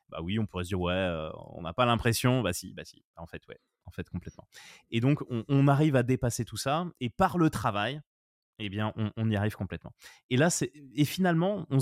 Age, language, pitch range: 20-39, French, 115-150 Hz